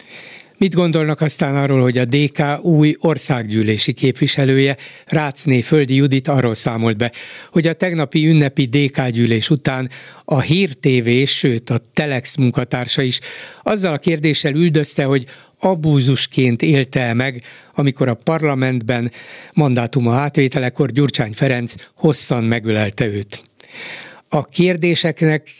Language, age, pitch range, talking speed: Hungarian, 60-79, 125-155 Hz, 115 wpm